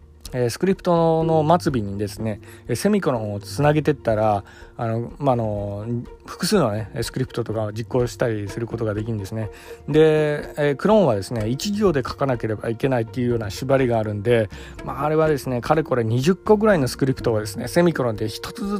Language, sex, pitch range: Japanese, male, 110-150 Hz